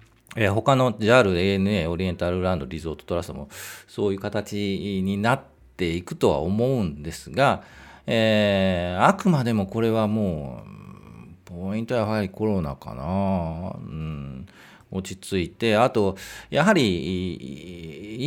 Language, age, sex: Japanese, 40-59, male